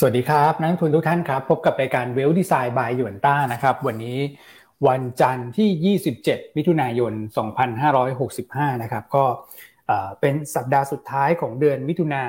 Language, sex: Thai, male